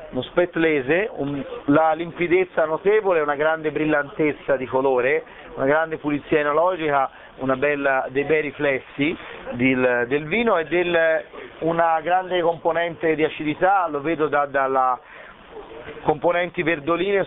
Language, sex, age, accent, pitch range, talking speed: Italian, male, 30-49, native, 145-185 Hz, 125 wpm